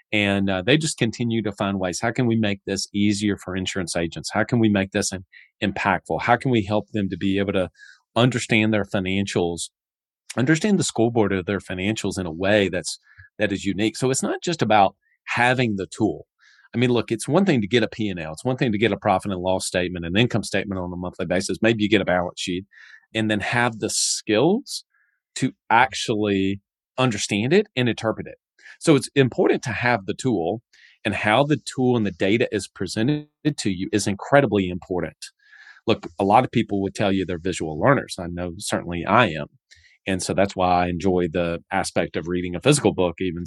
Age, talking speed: 30-49, 215 wpm